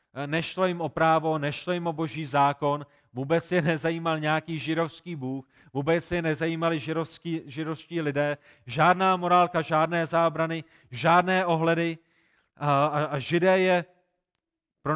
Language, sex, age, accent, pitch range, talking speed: Czech, male, 30-49, native, 150-175 Hz, 130 wpm